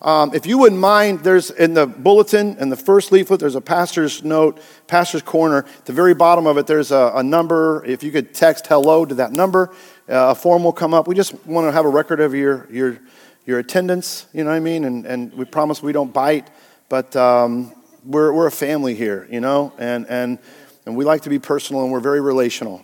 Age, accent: 40-59, American